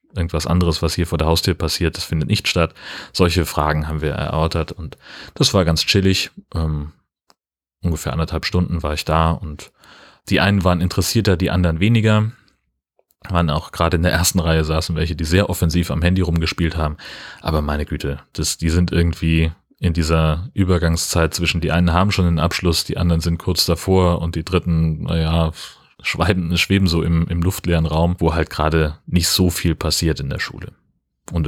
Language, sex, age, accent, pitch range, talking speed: German, male, 30-49, German, 80-95 Hz, 185 wpm